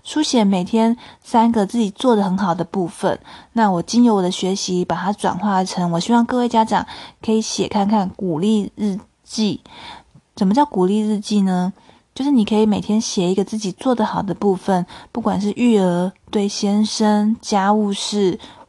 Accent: native